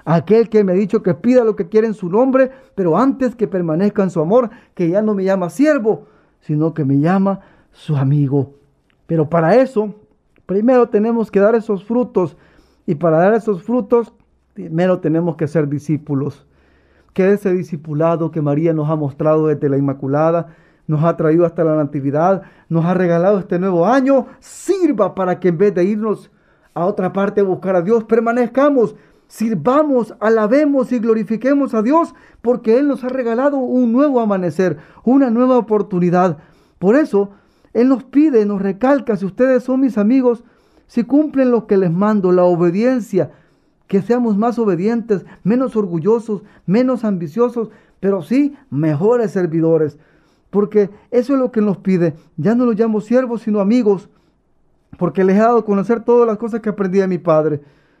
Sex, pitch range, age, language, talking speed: male, 170-235 Hz, 40-59, Spanish, 170 wpm